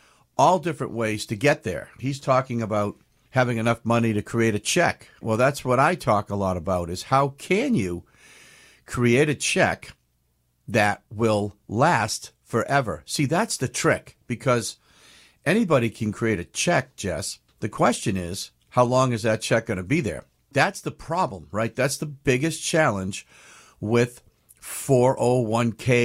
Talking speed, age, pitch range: 155 wpm, 50-69, 100-130 Hz